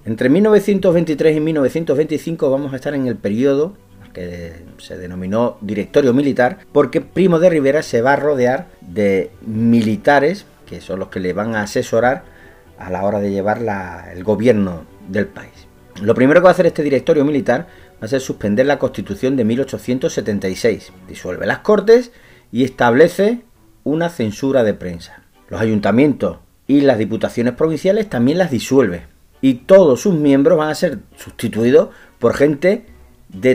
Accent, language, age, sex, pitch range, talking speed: Spanish, Spanish, 40-59, male, 100-155 Hz, 160 wpm